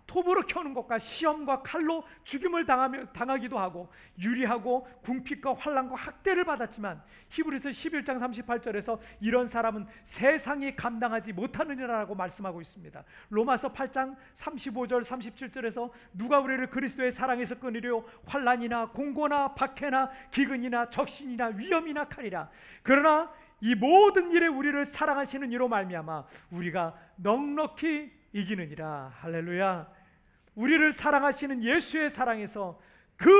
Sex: male